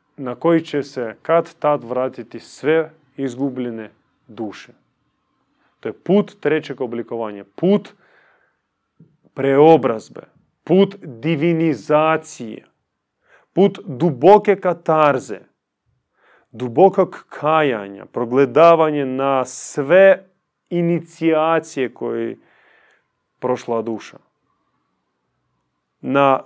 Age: 30-49